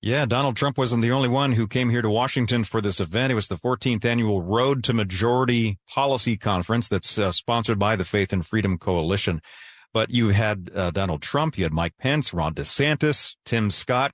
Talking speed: 205 wpm